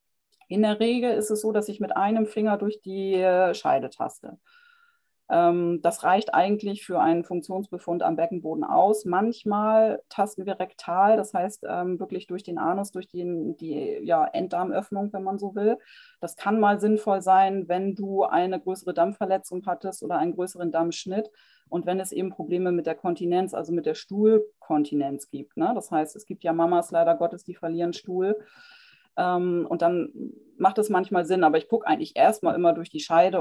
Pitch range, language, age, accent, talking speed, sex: 170-210 Hz, German, 30-49, German, 180 wpm, female